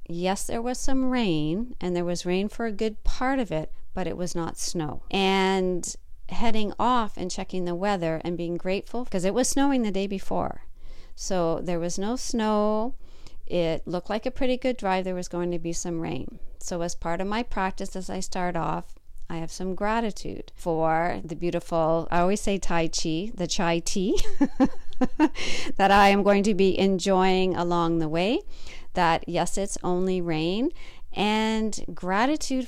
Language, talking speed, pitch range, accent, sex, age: English, 180 wpm, 170-215 Hz, American, female, 50-69